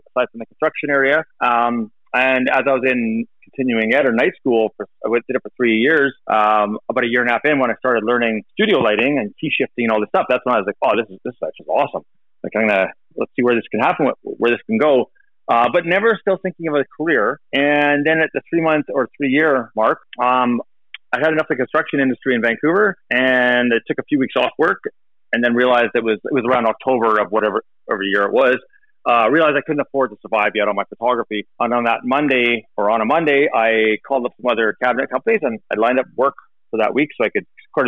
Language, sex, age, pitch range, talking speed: English, male, 30-49, 120-150 Hz, 250 wpm